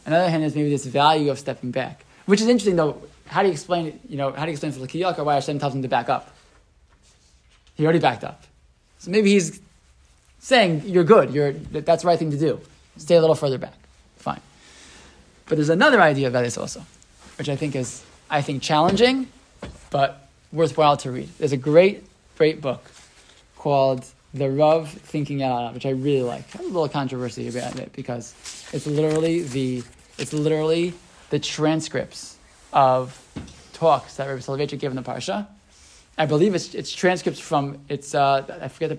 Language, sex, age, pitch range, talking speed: English, male, 20-39, 130-165 Hz, 190 wpm